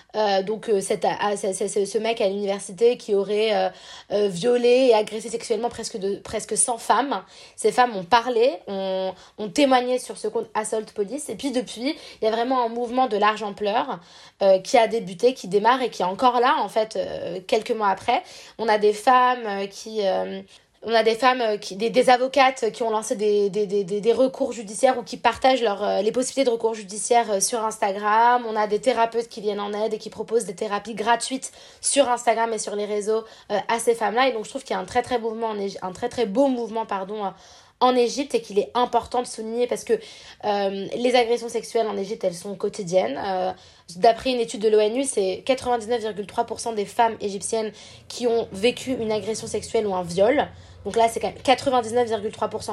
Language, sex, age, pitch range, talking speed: French, female, 20-39, 205-245 Hz, 200 wpm